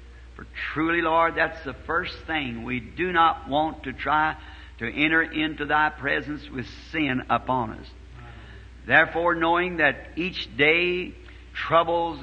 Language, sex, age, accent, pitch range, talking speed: English, male, 60-79, American, 120-160 Hz, 130 wpm